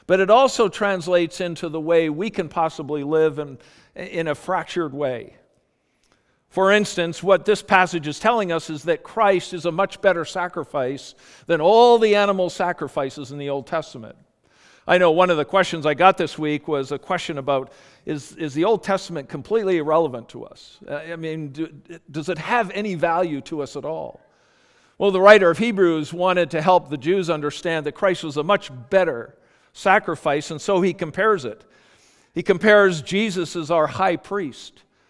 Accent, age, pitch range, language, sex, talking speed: American, 50-69, 160-205 Hz, English, male, 180 wpm